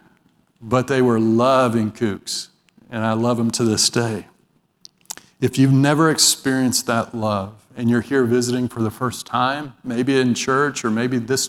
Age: 40-59